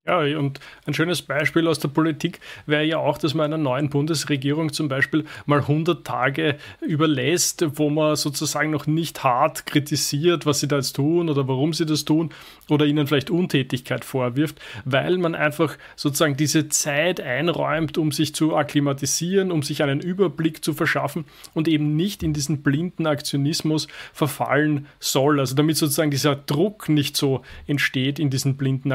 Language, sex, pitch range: German, male, 145-165 Hz